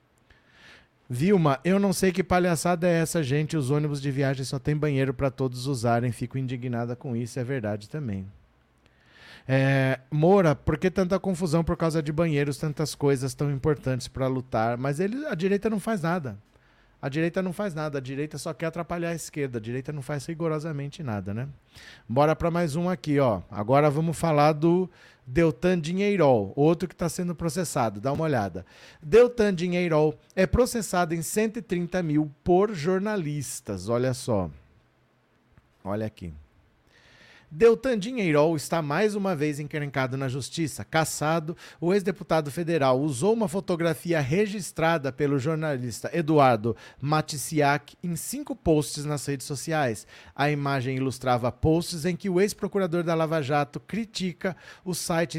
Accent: Brazilian